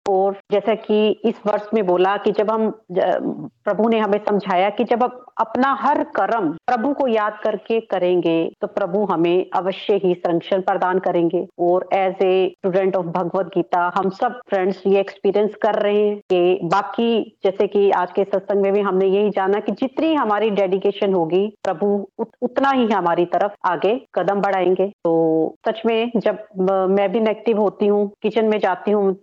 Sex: female